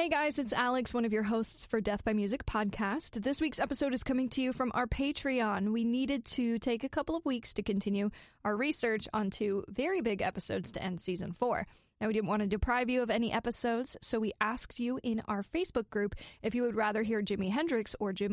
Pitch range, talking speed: 205-260 Hz, 230 wpm